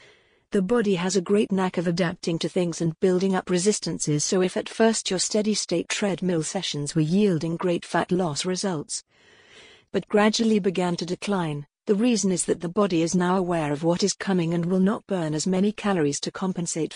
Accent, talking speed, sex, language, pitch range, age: British, 195 wpm, female, English, 170-200 Hz, 50-69